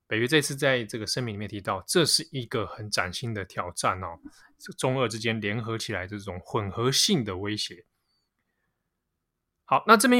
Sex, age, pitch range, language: male, 20-39, 105-135 Hz, Chinese